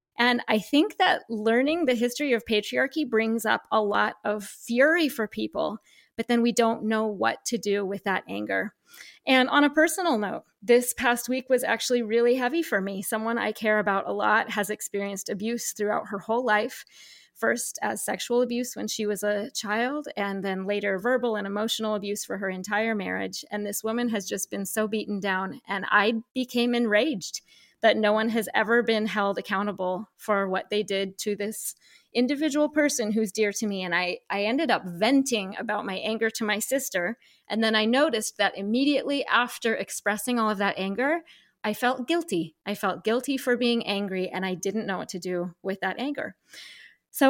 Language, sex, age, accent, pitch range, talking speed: English, female, 30-49, American, 205-245 Hz, 195 wpm